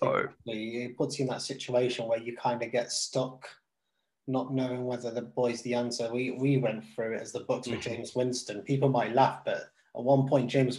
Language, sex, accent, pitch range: English, male, British, 115-135 Hz